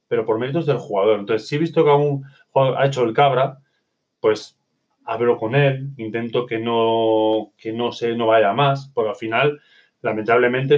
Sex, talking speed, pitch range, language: male, 190 wpm, 115-150 Hz, Spanish